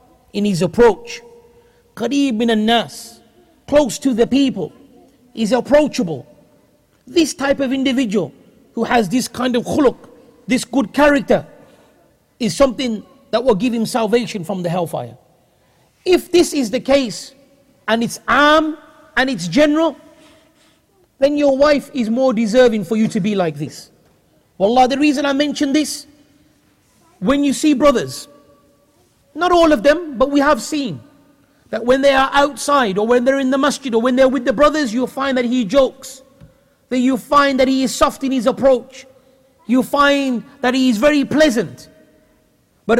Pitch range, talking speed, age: 235-280 Hz, 160 wpm, 40-59